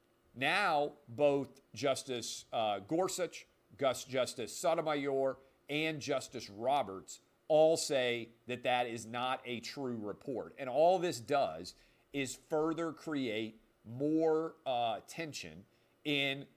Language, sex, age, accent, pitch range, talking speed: English, male, 40-59, American, 115-145 Hz, 110 wpm